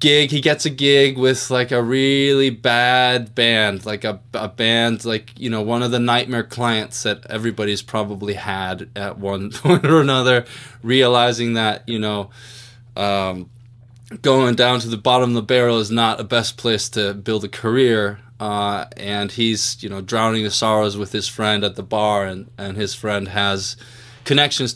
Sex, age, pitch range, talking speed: male, 20-39, 105-125 Hz, 180 wpm